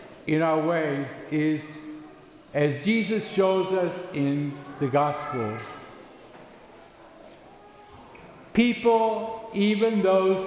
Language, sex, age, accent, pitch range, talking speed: English, male, 60-79, American, 180-230 Hz, 80 wpm